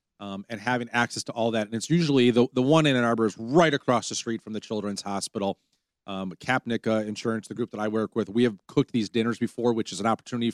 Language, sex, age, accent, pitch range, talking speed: English, male, 40-59, American, 110-135 Hz, 250 wpm